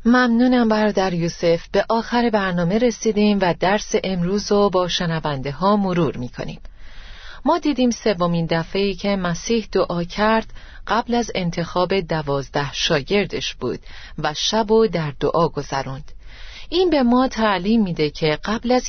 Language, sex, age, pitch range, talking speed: Persian, female, 30-49, 160-220 Hz, 135 wpm